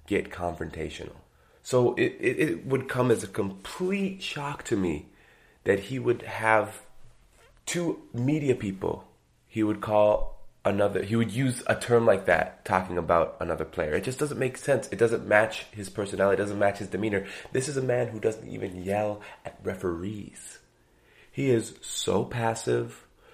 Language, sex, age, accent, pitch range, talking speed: English, male, 30-49, American, 100-135 Hz, 165 wpm